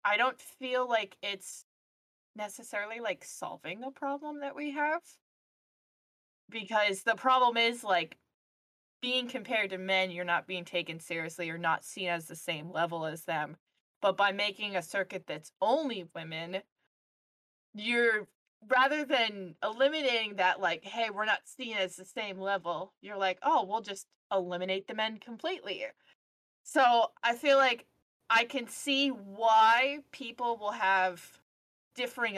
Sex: female